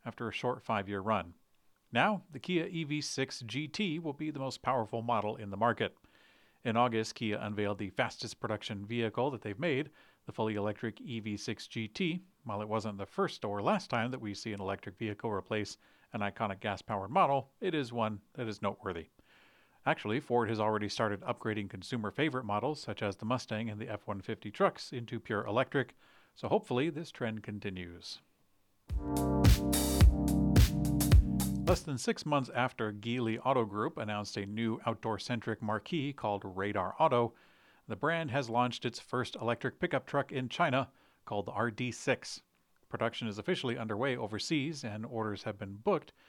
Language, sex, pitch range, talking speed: English, male, 105-130 Hz, 160 wpm